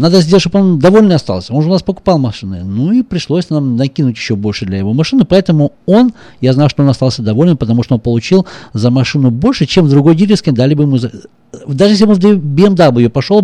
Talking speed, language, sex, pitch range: 230 wpm, Russian, male, 125-190 Hz